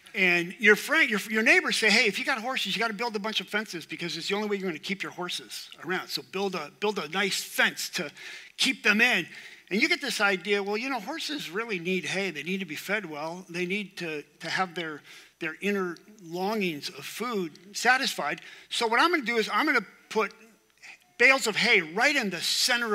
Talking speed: 240 wpm